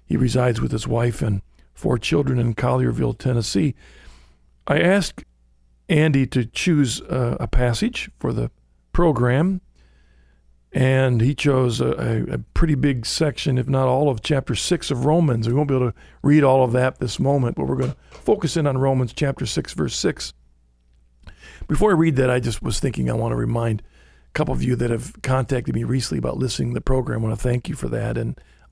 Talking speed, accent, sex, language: 200 wpm, American, male, English